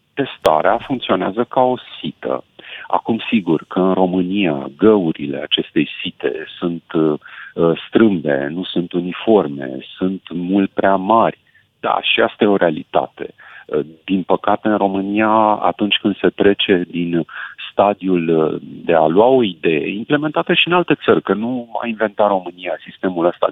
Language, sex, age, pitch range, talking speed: Romanian, male, 40-59, 85-110 Hz, 140 wpm